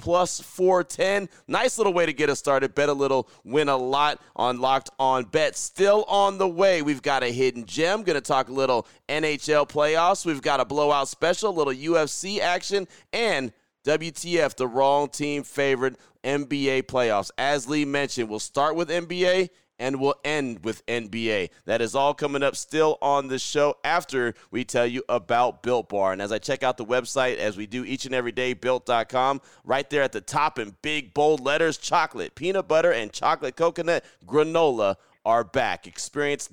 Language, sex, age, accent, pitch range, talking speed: English, male, 30-49, American, 125-160 Hz, 185 wpm